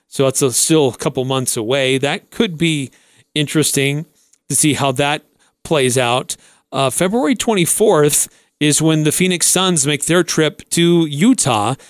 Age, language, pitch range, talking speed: 40-59, English, 130-160 Hz, 150 wpm